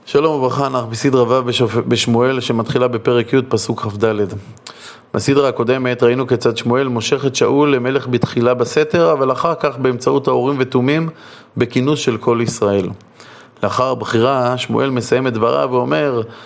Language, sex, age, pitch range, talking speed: Hebrew, male, 30-49, 115-140 Hz, 145 wpm